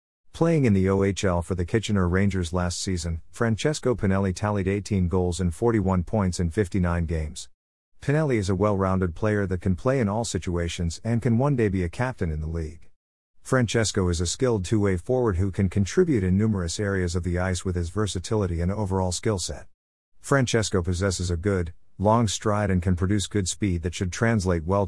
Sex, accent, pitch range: male, American, 90-110 Hz